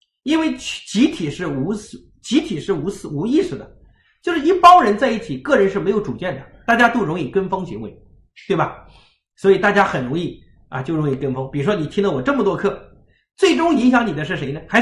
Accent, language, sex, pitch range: native, Chinese, male, 160-260 Hz